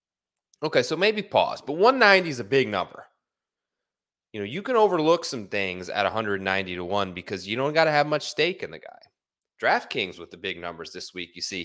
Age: 20-39